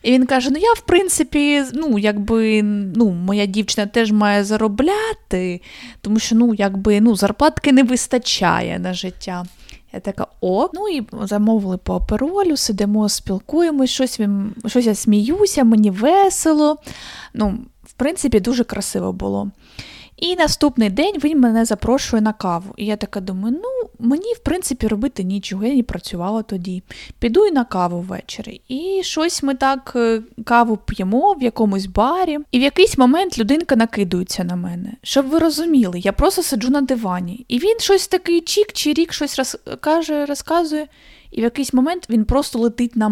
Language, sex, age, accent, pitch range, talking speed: Ukrainian, female, 20-39, native, 205-275 Hz, 165 wpm